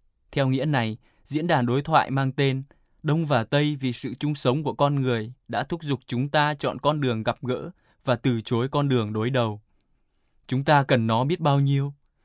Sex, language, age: male, Vietnamese, 20-39